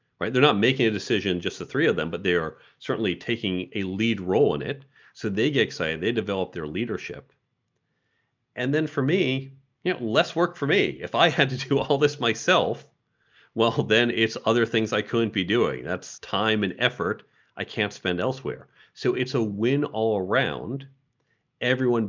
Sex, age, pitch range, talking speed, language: male, 40-59, 95-120 Hz, 195 wpm, English